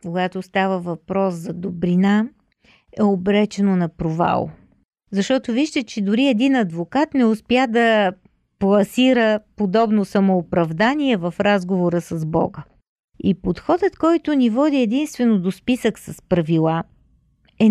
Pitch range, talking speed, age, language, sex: 185-240 Hz, 120 wpm, 40-59, Bulgarian, female